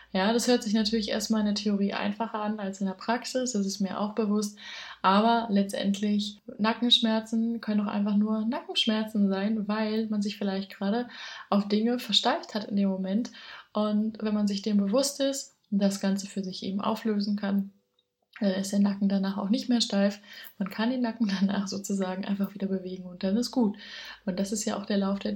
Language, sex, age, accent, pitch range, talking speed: German, female, 20-39, German, 200-230 Hz, 200 wpm